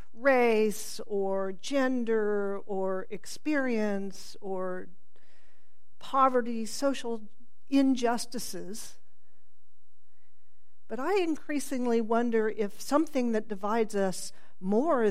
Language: English